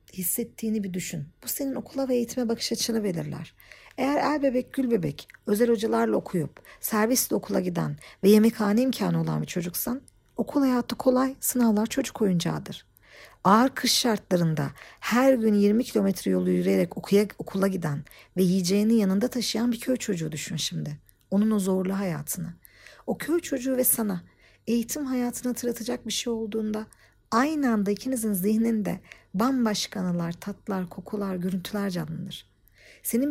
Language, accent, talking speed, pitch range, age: Turkish, native, 145 wpm, 180-240 Hz, 50-69